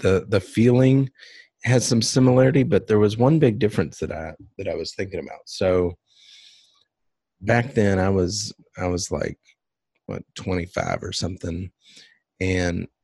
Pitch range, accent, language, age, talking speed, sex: 90-110 Hz, American, English, 30-49, 150 wpm, male